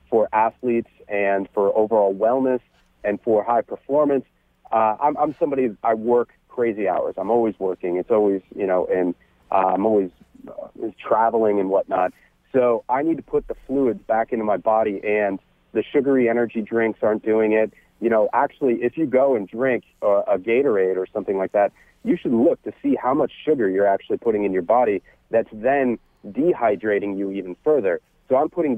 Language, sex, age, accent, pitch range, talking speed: English, male, 40-59, American, 100-125 Hz, 190 wpm